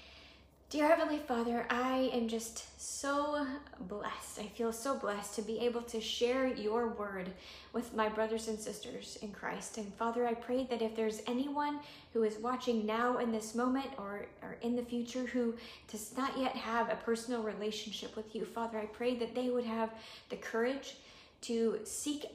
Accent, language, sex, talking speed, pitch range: American, English, female, 180 wpm, 215-245 Hz